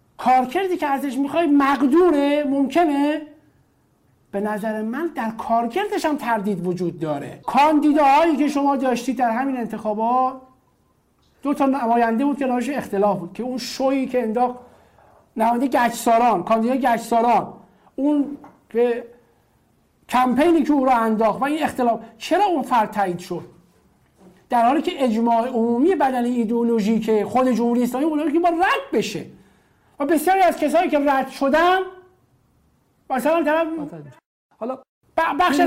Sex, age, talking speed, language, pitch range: male, 50-69, 125 wpm, Persian, 205-290 Hz